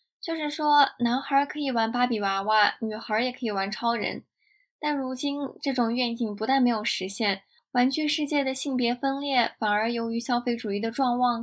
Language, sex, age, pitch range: Chinese, female, 10-29, 220-275 Hz